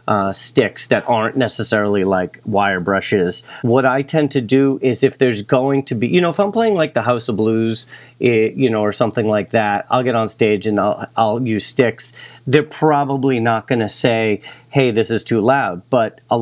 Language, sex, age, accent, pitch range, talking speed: English, male, 40-59, American, 115-155 Hz, 210 wpm